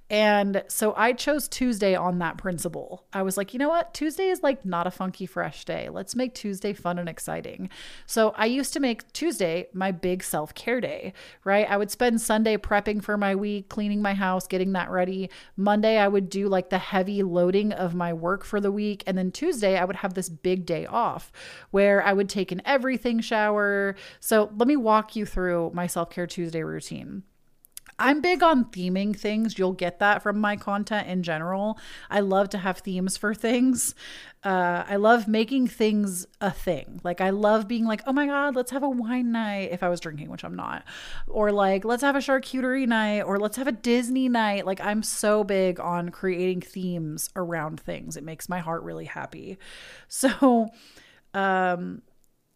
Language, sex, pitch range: English, female, 185-225 Hz